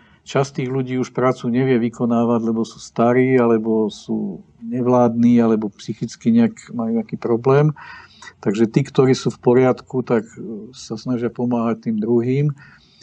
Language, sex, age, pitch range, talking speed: Czech, male, 50-69, 115-135 Hz, 140 wpm